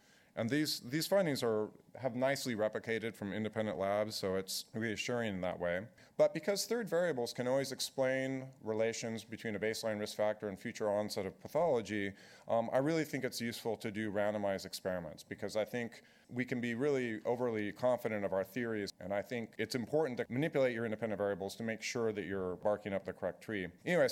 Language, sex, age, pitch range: English, male, 40-59, 105-125 Hz